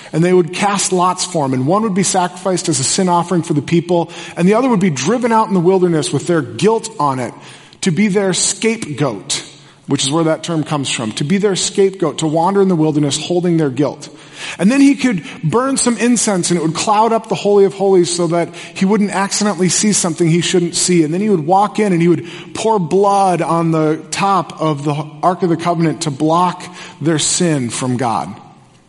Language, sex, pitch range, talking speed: English, male, 160-210 Hz, 225 wpm